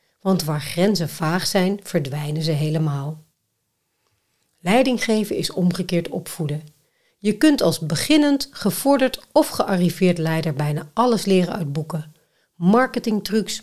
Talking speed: 115 wpm